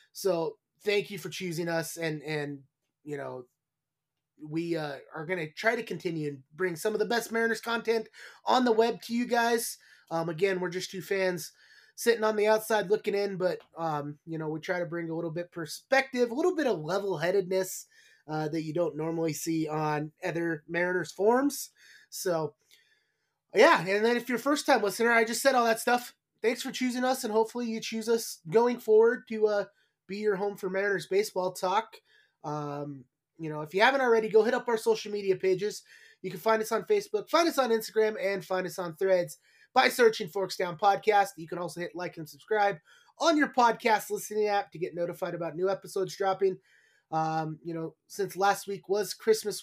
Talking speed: 200 wpm